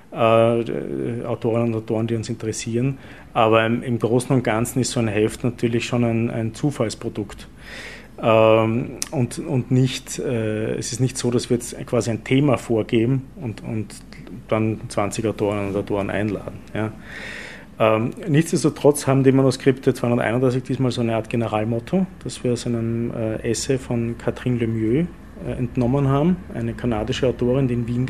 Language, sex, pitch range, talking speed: German, male, 110-130 Hz, 145 wpm